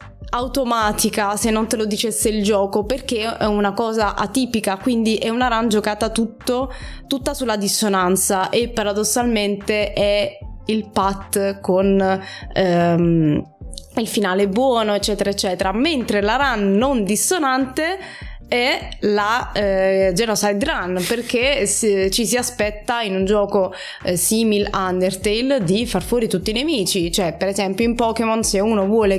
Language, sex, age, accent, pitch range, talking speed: Italian, female, 20-39, native, 195-230 Hz, 140 wpm